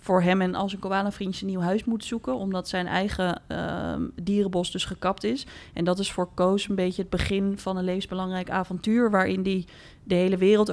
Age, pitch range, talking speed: 20-39, 180-200 Hz, 205 wpm